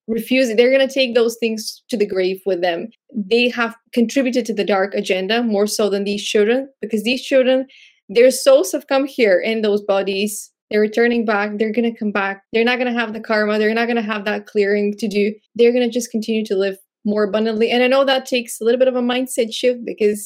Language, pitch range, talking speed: English, 210-250 Hz, 225 wpm